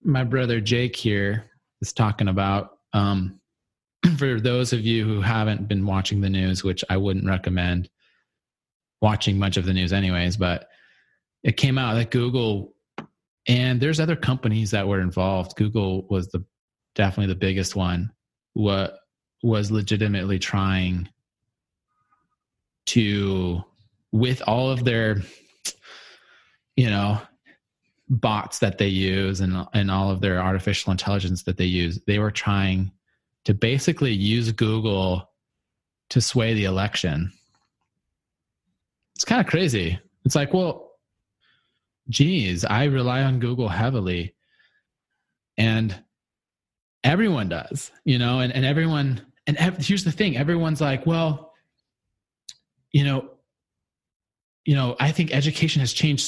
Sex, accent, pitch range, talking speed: male, American, 95-130 Hz, 130 wpm